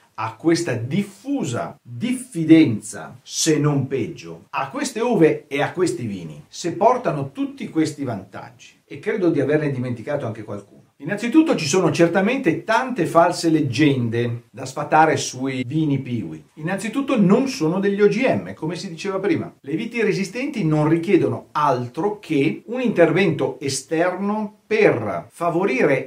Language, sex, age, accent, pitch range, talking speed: Italian, male, 50-69, native, 140-200 Hz, 135 wpm